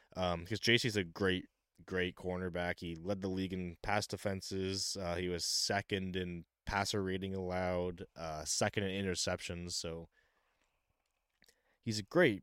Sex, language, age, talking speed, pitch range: male, English, 20-39, 140 wpm, 90-110 Hz